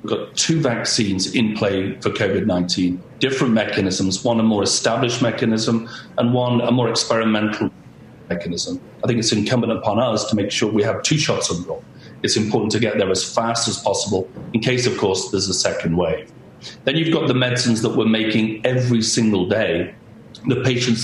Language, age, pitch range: English, 40-59, 105-130 Hz